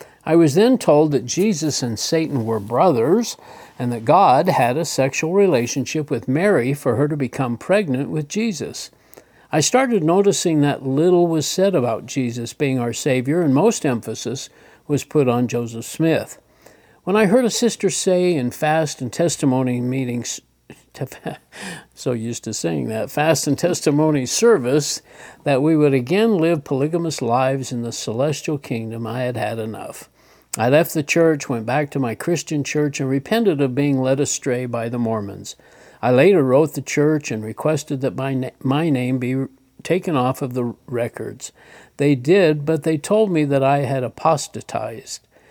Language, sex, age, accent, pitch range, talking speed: English, male, 60-79, American, 125-160 Hz, 165 wpm